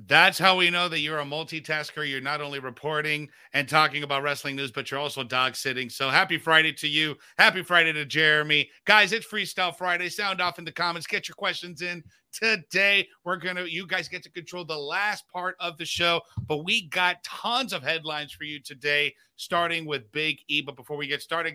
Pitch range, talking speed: 150-180 Hz, 215 wpm